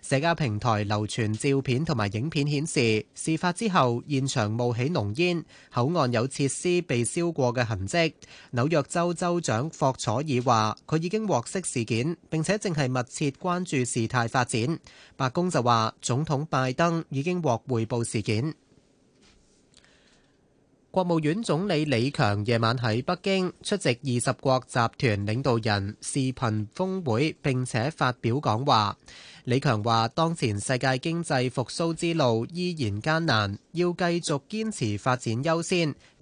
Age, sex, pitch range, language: 20-39, male, 120-165 Hz, Chinese